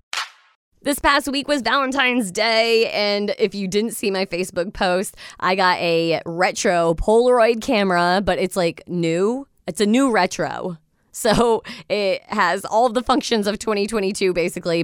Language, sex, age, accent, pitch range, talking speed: English, female, 20-39, American, 175-230 Hz, 150 wpm